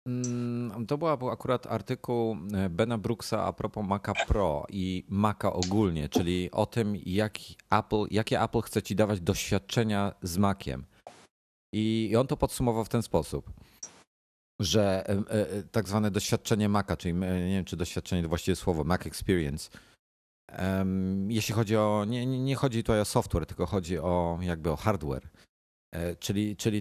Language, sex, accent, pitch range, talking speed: Polish, male, native, 90-115 Hz, 145 wpm